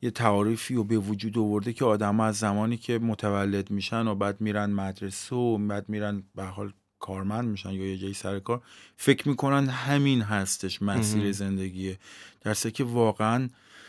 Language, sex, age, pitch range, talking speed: Persian, male, 30-49, 100-115 Hz, 160 wpm